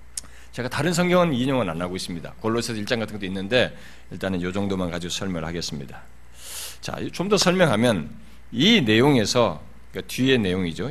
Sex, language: male, Korean